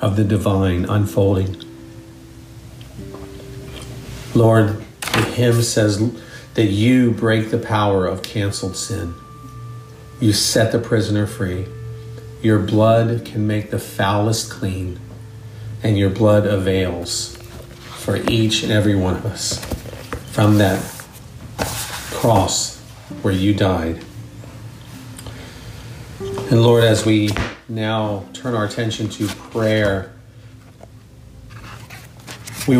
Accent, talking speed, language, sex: American, 100 wpm, English, male